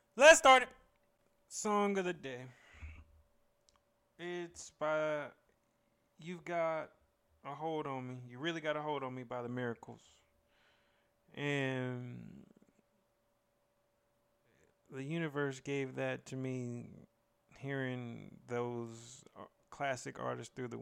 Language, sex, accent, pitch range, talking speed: English, male, American, 115-130 Hz, 110 wpm